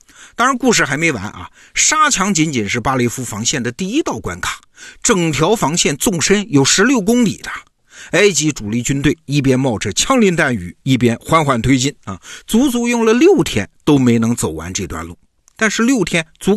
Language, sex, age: Chinese, male, 50-69